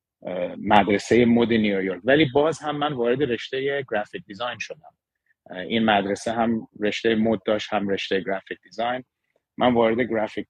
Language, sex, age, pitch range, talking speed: Persian, male, 30-49, 100-125 Hz, 145 wpm